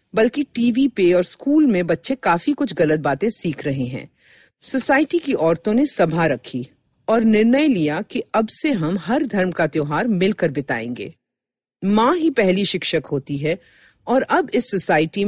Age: 50-69